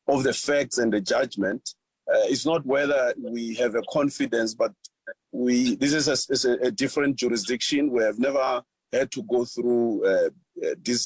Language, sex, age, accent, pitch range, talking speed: English, male, 40-59, South African, 120-155 Hz, 180 wpm